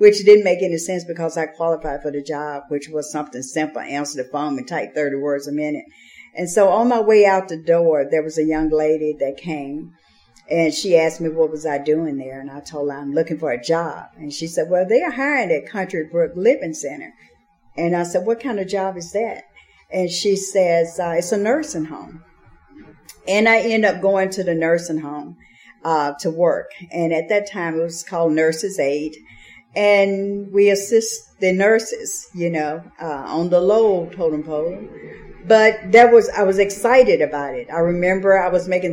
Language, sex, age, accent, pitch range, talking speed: English, female, 50-69, American, 155-190 Hz, 205 wpm